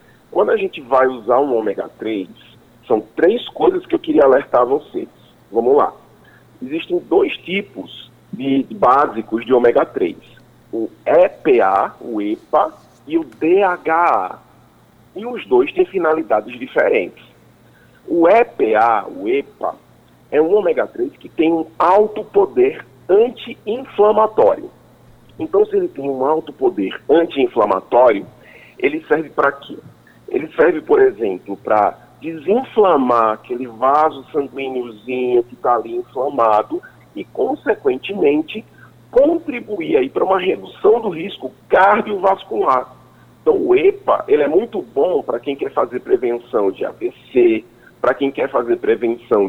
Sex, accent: male, Brazilian